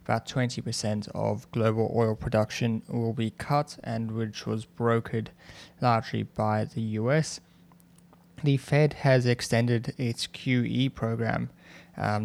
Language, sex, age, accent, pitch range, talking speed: English, male, 20-39, Australian, 115-125 Hz, 125 wpm